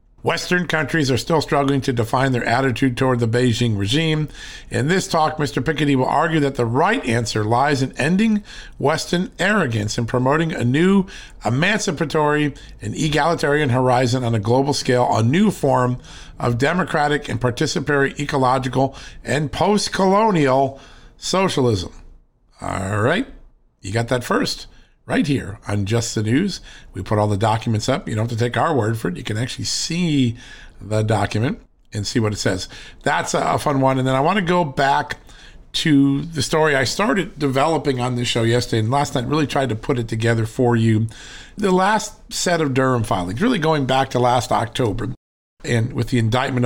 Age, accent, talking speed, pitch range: 50-69, American, 180 wpm, 120-155 Hz